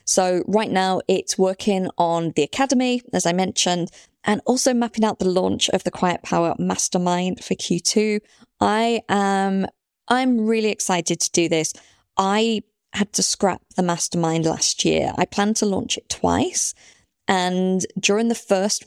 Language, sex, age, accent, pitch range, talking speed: English, female, 20-39, British, 170-205 Hz, 160 wpm